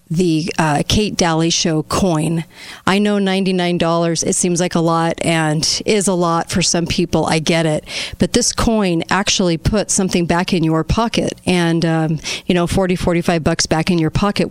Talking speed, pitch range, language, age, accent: 200 wpm, 160-190 Hz, English, 40-59, American